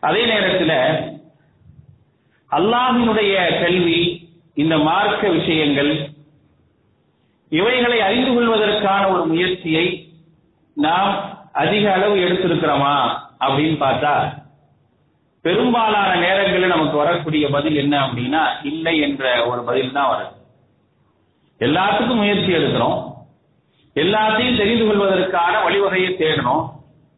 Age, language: 40-59, English